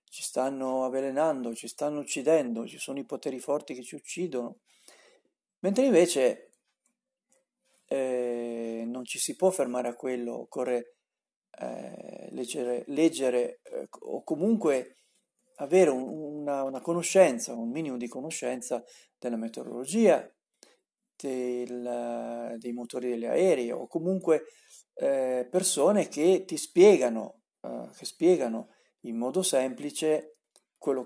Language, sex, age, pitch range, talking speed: Italian, male, 40-59, 120-170 Hz, 115 wpm